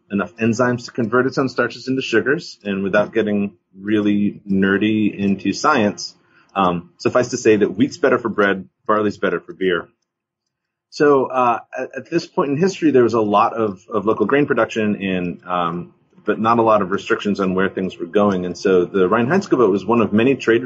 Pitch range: 95-120 Hz